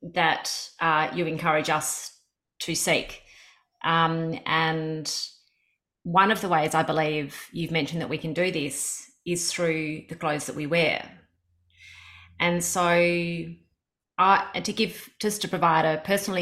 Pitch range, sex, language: 160-185 Hz, female, English